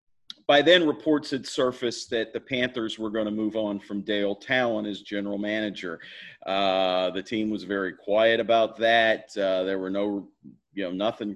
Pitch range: 100-115 Hz